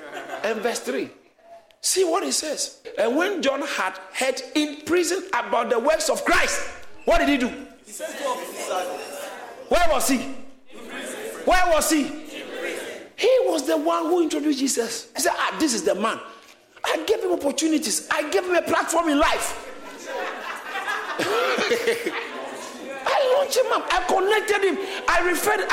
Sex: male